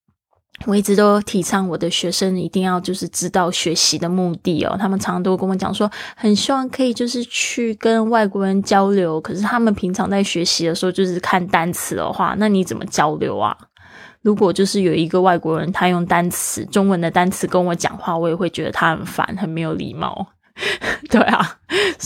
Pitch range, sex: 180-210 Hz, female